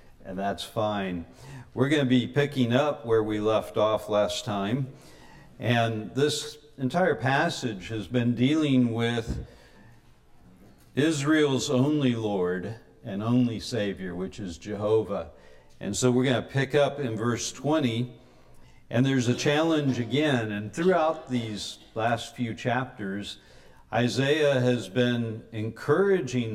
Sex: male